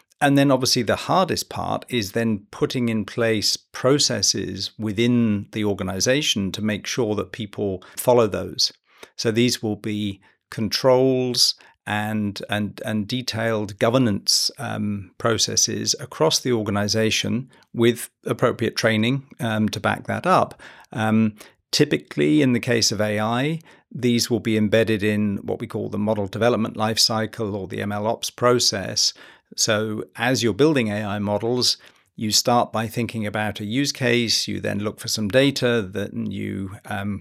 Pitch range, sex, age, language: 105-120 Hz, male, 40-59, English